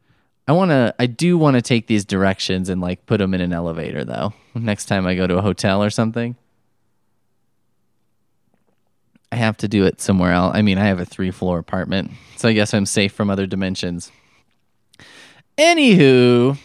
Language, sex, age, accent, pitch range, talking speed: English, male, 20-39, American, 95-130 Hz, 175 wpm